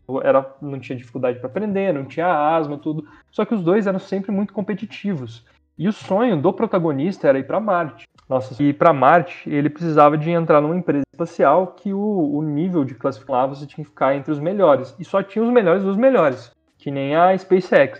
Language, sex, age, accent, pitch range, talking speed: Portuguese, male, 20-39, Brazilian, 140-190 Hz, 205 wpm